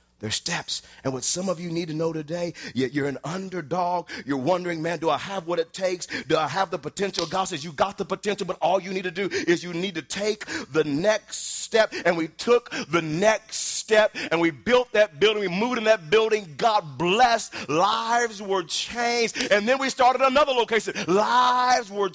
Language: English